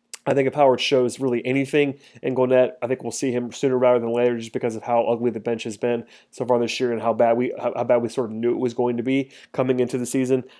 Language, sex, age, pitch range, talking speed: English, male, 30-49, 120-130 Hz, 290 wpm